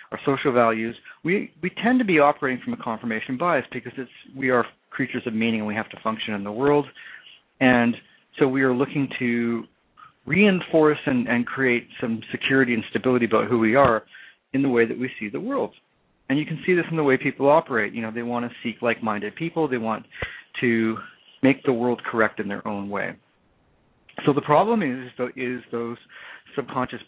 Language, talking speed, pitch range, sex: English, 200 wpm, 115-145 Hz, male